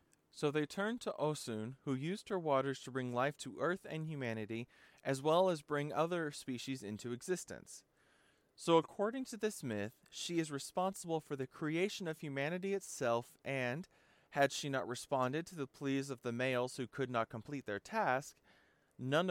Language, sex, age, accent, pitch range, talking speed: English, male, 30-49, American, 130-175 Hz, 175 wpm